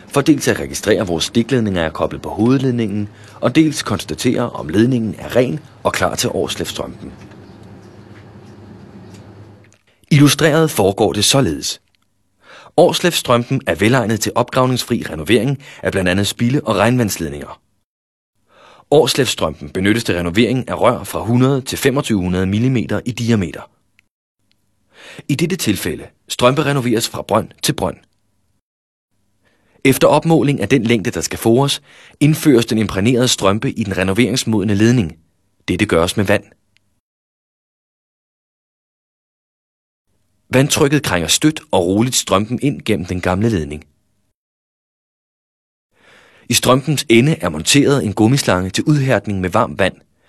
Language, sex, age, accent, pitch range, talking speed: Danish, male, 30-49, native, 100-125 Hz, 120 wpm